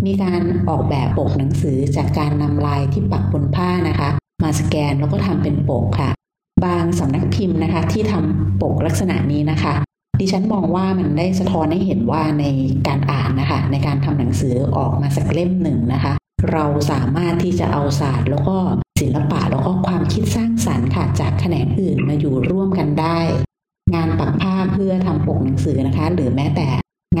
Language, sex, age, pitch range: Thai, female, 30-49, 110-160 Hz